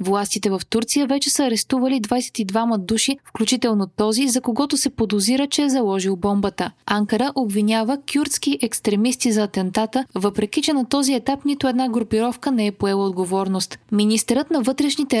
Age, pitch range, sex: 20-39, 205-265 Hz, female